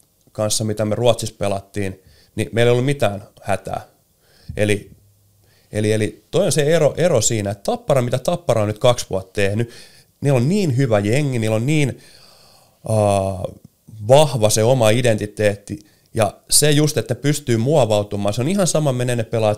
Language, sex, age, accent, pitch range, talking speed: Finnish, male, 30-49, native, 105-130 Hz, 170 wpm